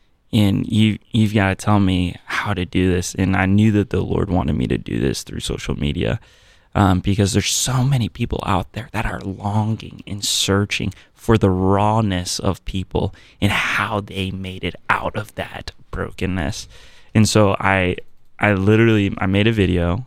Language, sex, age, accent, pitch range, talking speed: English, male, 20-39, American, 95-120 Hz, 180 wpm